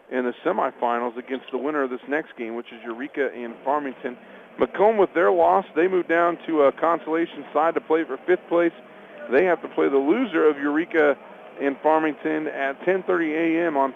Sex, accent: male, American